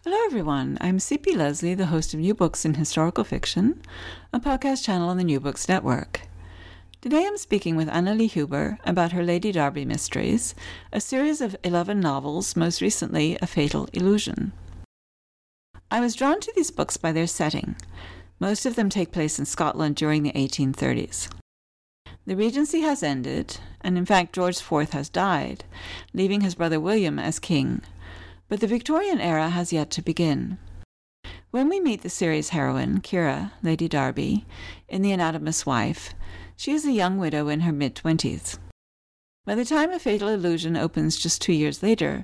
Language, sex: English, female